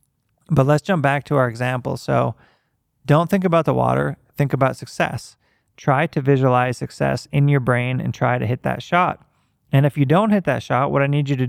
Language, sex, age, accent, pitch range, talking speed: English, male, 20-39, American, 125-150 Hz, 215 wpm